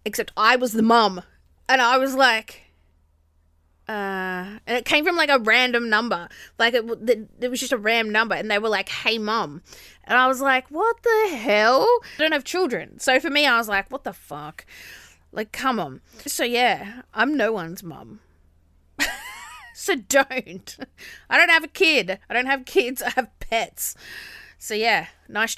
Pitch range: 180-255 Hz